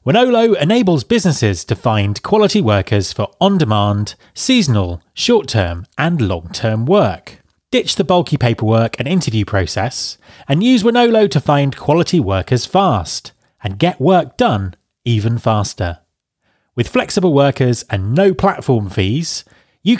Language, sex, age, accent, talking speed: English, male, 30-49, British, 130 wpm